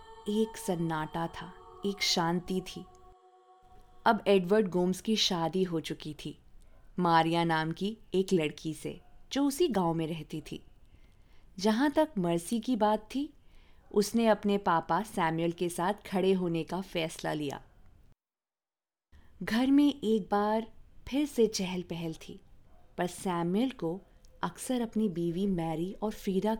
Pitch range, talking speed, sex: 170-225 Hz, 140 wpm, female